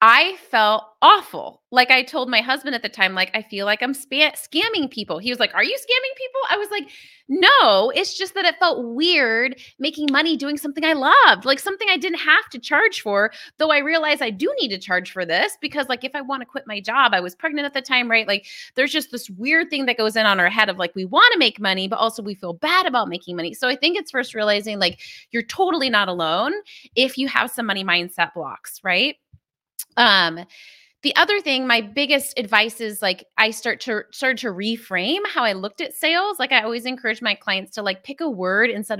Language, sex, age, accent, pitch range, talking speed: English, female, 20-39, American, 205-290 Hz, 235 wpm